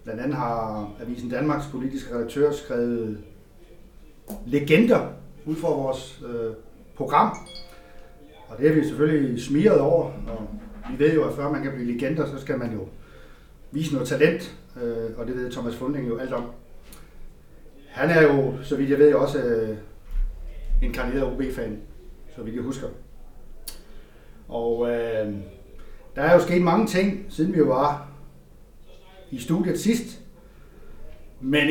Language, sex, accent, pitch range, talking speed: Danish, male, native, 120-155 Hz, 145 wpm